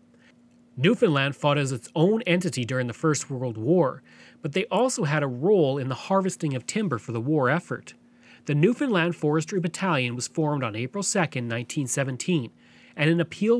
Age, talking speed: 40-59, 170 wpm